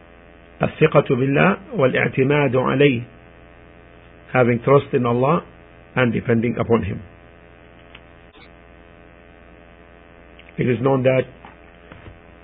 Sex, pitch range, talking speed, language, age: male, 85-125 Hz, 70 wpm, English, 50-69